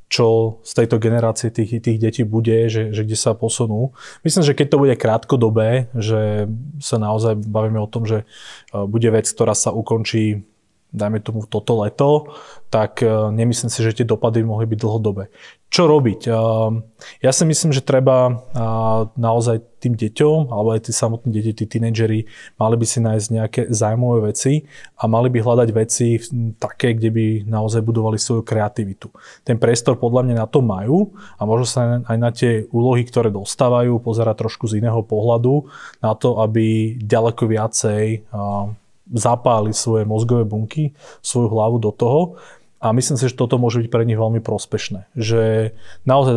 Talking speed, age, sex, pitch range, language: 165 wpm, 20-39, male, 110-120 Hz, Slovak